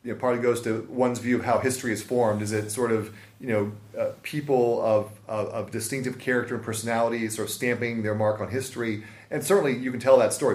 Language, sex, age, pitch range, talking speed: English, male, 30-49, 110-140 Hz, 240 wpm